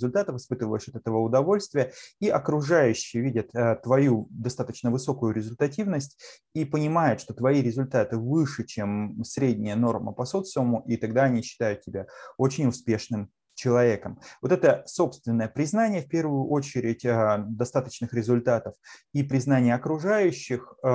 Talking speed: 125 wpm